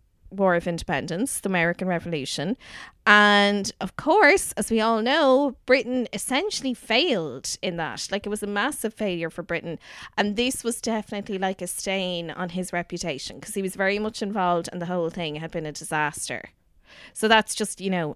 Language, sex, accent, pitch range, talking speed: English, female, Irish, 175-230 Hz, 180 wpm